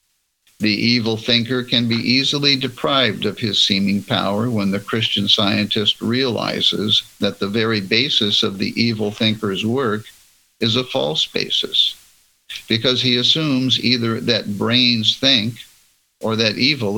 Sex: male